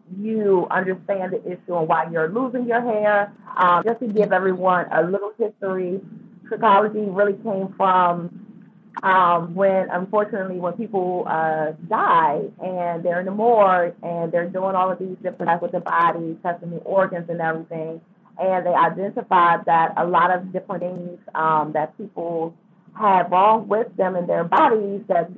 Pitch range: 175-215 Hz